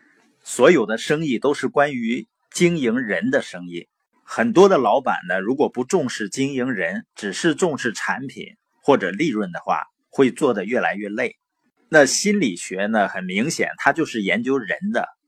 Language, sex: Chinese, male